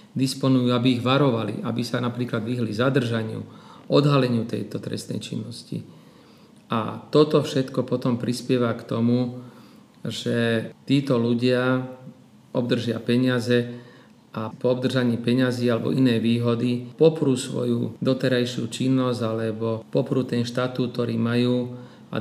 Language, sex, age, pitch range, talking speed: Slovak, male, 40-59, 120-130 Hz, 115 wpm